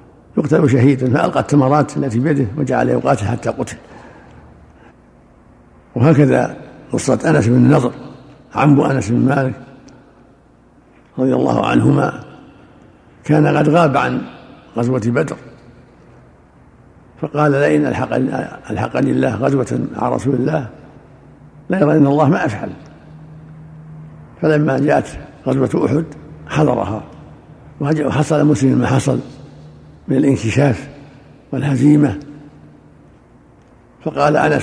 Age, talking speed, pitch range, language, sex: 60-79, 95 wpm, 125-150 Hz, Arabic, male